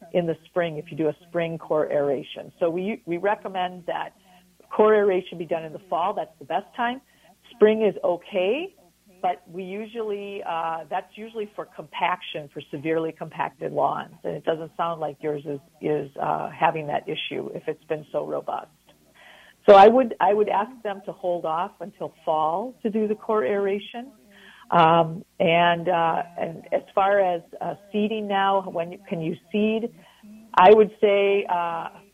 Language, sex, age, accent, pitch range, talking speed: English, female, 50-69, American, 160-200 Hz, 175 wpm